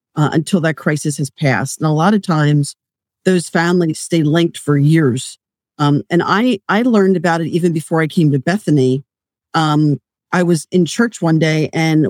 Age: 50-69